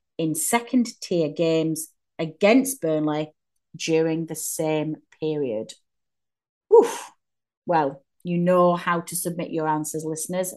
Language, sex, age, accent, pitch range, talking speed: English, female, 30-49, British, 150-185 Hz, 115 wpm